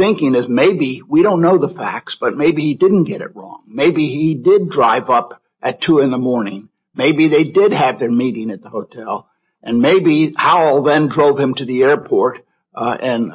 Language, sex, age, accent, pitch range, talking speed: English, male, 60-79, American, 120-165 Hz, 200 wpm